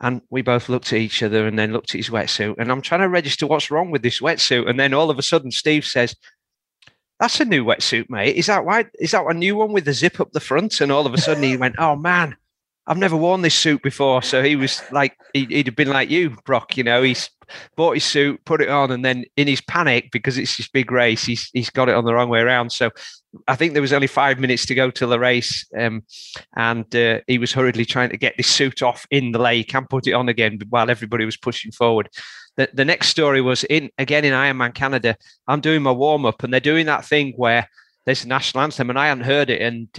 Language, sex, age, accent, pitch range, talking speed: English, male, 40-59, British, 120-150 Hz, 255 wpm